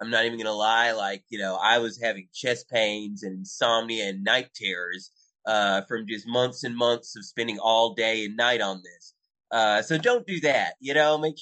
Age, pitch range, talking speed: 30-49, 125-175 Hz, 215 wpm